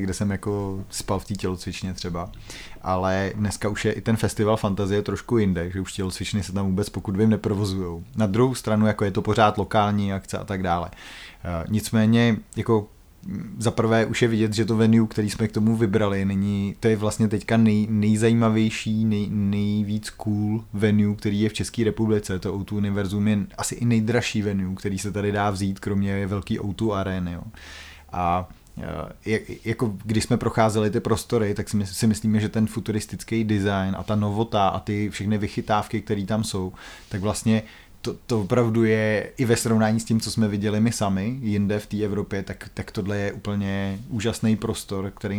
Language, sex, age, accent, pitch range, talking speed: Czech, male, 30-49, native, 100-110 Hz, 185 wpm